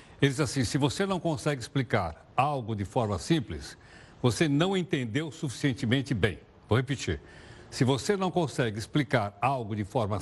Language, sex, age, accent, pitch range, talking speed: Portuguese, male, 60-79, Brazilian, 120-160 Hz, 160 wpm